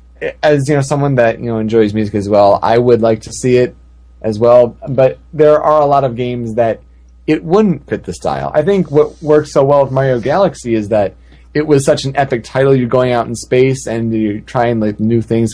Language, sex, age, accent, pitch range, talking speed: English, male, 20-39, American, 105-135 Hz, 230 wpm